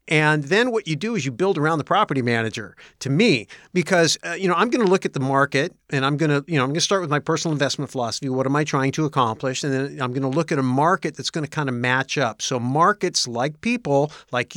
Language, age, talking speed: English, 50-69, 275 wpm